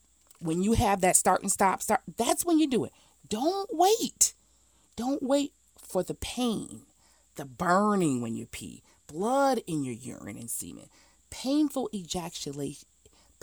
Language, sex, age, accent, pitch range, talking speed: English, female, 40-59, American, 175-290 Hz, 150 wpm